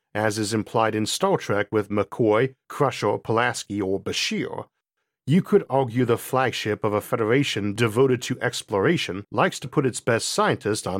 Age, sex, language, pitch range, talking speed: 50-69, male, English, 105-130 Hz, 165 wpm